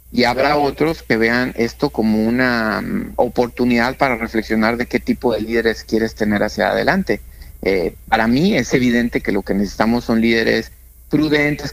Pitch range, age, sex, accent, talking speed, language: 105-130 Hz, 50-69, male, Mexican, 170 wpm, Spanish